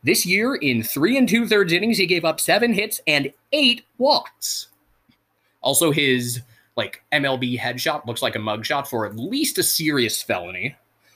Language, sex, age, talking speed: English, male, 20-39, 160 wpm